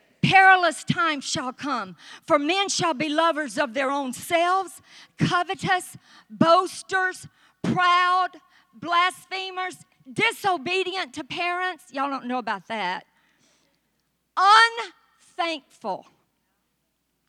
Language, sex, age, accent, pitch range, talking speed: English, female, 50-69, American, 250-335 Hz, 90 wpm